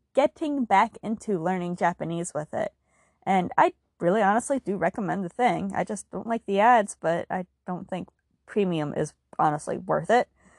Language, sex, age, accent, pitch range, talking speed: English, female, 20-39, American, 185-265 Hz, 170 wpm